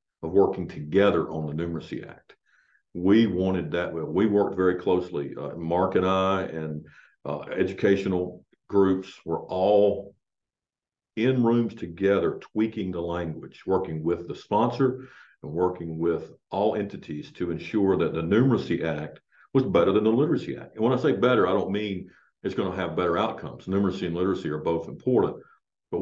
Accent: American